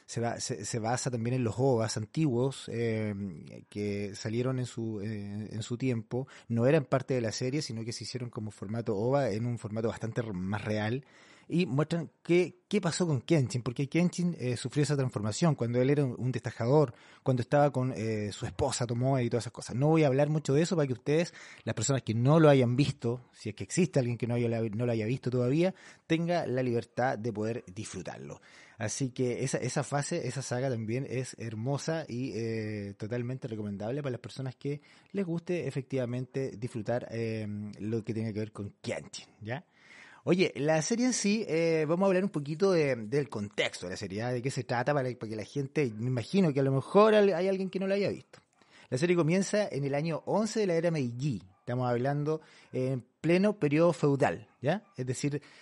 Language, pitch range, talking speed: Spanish, 115-155 Hz, 205 wpm